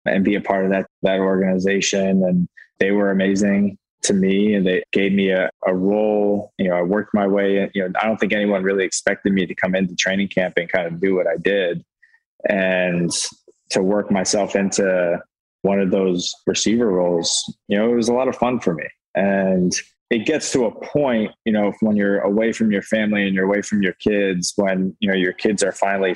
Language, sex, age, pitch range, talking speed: English, male, 20-39, 95-105 Hz, 220 wpm